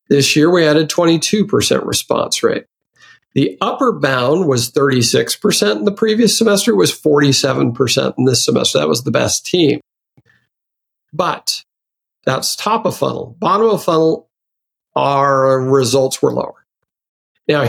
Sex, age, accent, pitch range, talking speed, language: male, 50-69, American, 140-195 Hz, 135 wpm, English